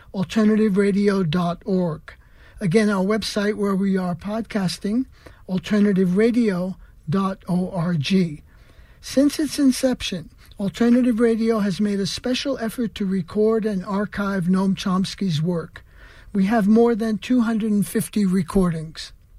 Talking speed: 100 wpm